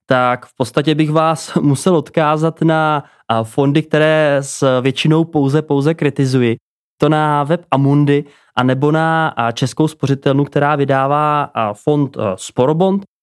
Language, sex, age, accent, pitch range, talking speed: Czech, male, 20-39, native, 125-150 Hz, 125 wpm